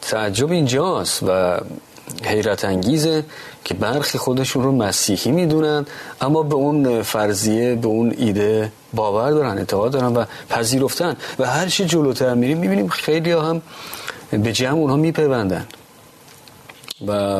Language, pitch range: Persian, 105-145 Hz